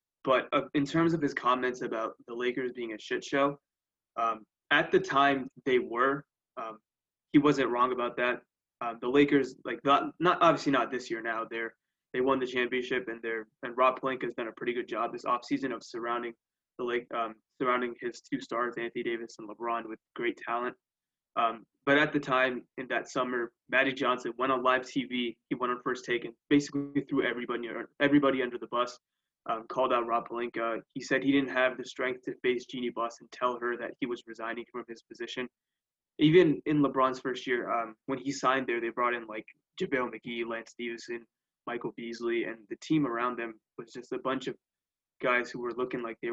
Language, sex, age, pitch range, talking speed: English, male, 20-39, 115-140 Hz, 205 wpm